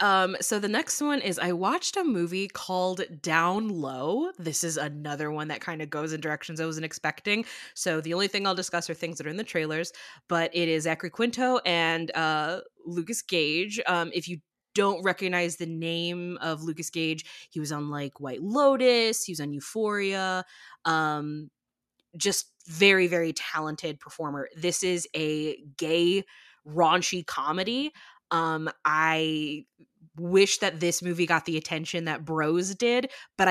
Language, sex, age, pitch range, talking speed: English, female, 20-39, 155-185 Hz, 165 wpm